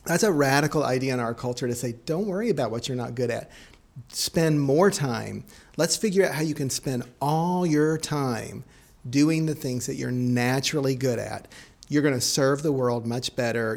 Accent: American